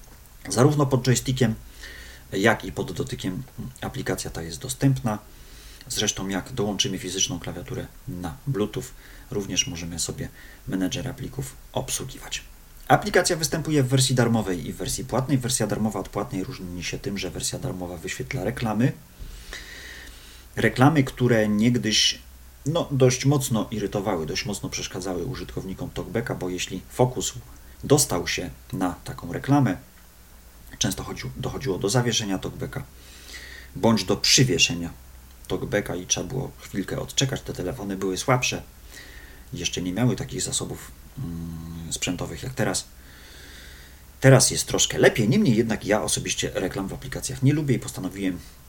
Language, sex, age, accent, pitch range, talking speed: Polish, male, 40-59, native, 90-130 Hz, 130 wpm